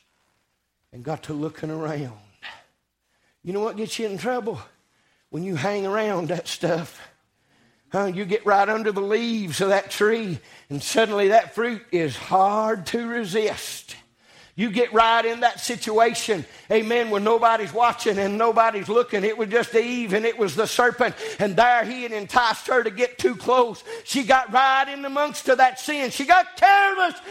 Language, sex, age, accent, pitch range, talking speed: English, male, 50-69, American, 180-295 Hz, 175 wpm